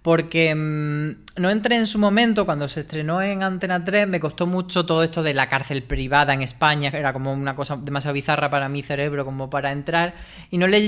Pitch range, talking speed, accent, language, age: 140-175 Hz, 220 wpm, Spanish, Spanish, 20-39